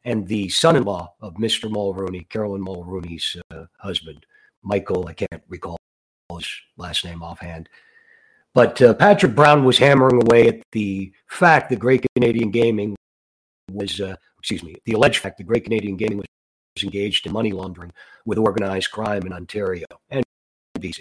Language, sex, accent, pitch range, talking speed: English, male, American, 95-120 Hz, 155 wpm